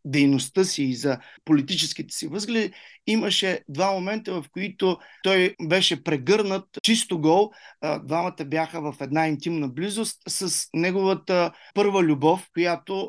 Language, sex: Bulgarian, male